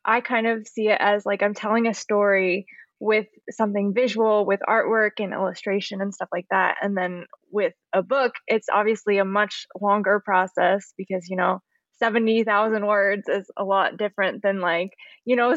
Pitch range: 195-225 Hz